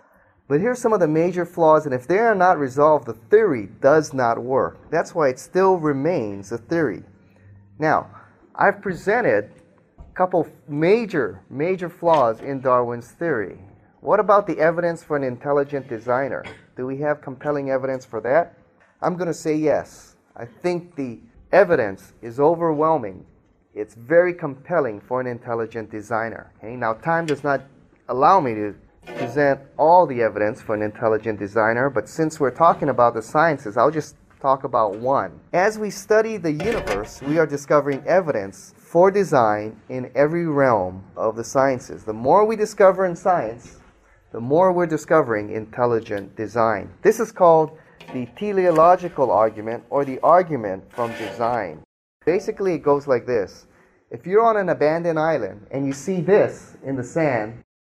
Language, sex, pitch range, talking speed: English, male, 115-170 Hz, 160 wpm